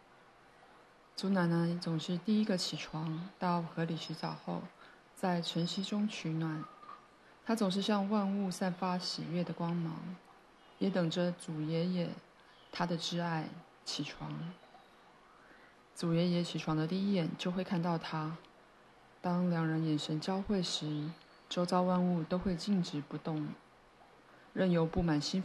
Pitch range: 165-185 Hz